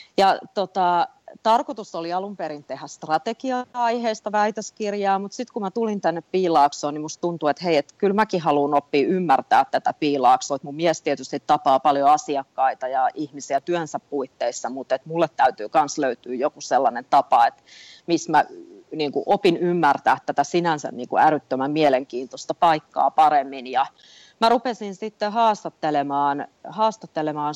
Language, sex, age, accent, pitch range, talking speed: Finnish, female, 30-49, native, 135-185 Hz, 145 wpm